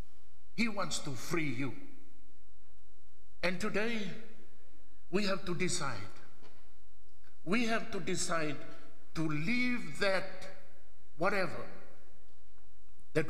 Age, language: 60-79, English